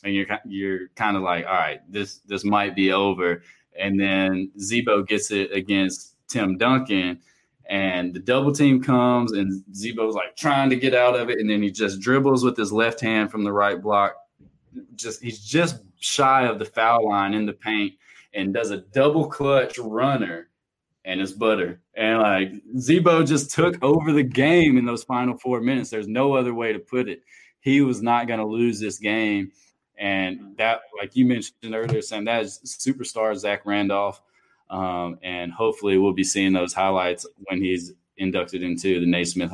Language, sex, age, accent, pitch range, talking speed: English, male, 20-39, American, 95-125 Hz, 185 wpm